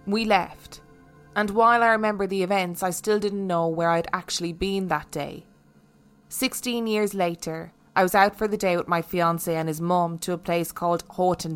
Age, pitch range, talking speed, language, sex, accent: 20-39, 165-200 Hz, 195 wpm, English, female, Irish